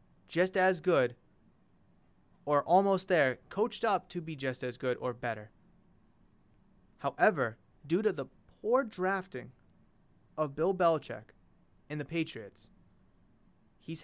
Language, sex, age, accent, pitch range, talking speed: English, male, 30-49, American, 130-180 Hz, 120 wpm